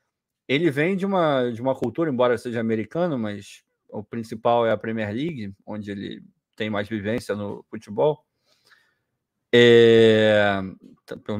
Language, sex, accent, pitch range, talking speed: Portuguese, male, Brazilian, 110-145 Hz, 125 wpm